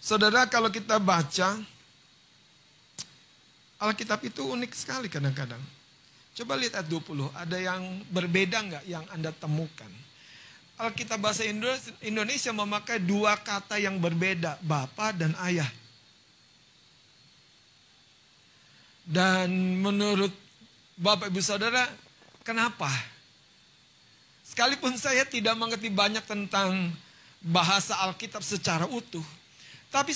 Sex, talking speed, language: male, 95 wpm, Indonesian